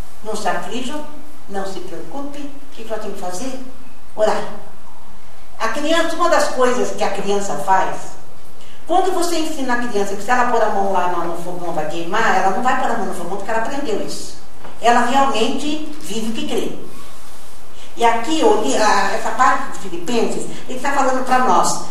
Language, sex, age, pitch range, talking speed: Portuguese, female, 50-69, 215-300 Hz, 185 wpm